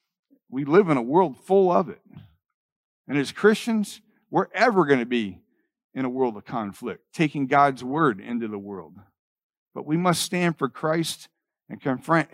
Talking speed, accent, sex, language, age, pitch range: 170 wpm, American, male, English, 50-69, 130-165 Hz